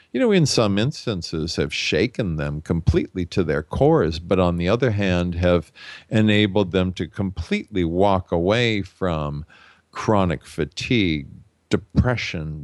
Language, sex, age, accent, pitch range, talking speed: English, male, 50-69, American, 85-105 Hz, 135 wpm